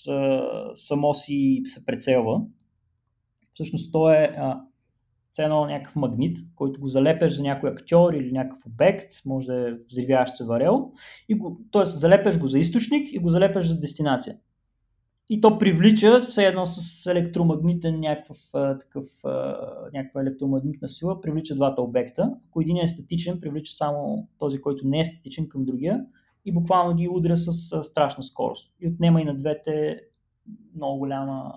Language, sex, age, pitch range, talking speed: Bulgarian, male, 20-39, 135-180 Hz, 150 wpm